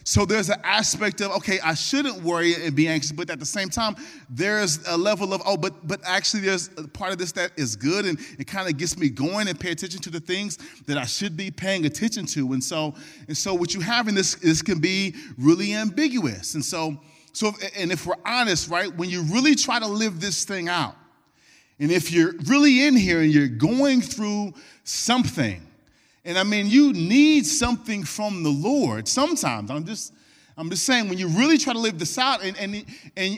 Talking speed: 215 wpm